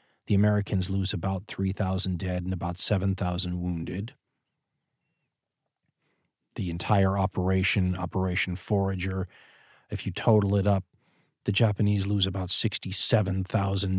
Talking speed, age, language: 105 wpm, 40-59, English